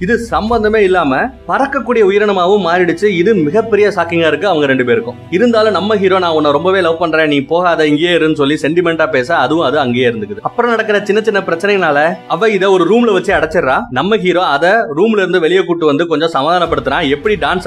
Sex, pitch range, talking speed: male, 155-205 Hz, 165 wpm